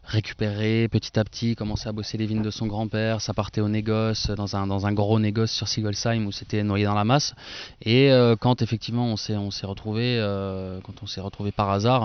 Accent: French